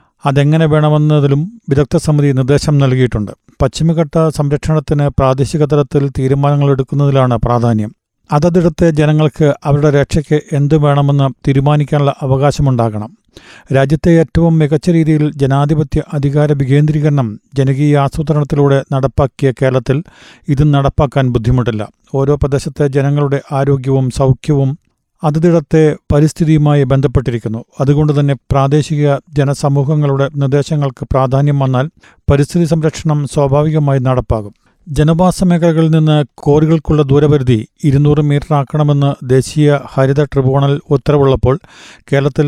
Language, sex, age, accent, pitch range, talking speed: Malayalam, male, 40-59, native, 135-150 Hz, 90 wpm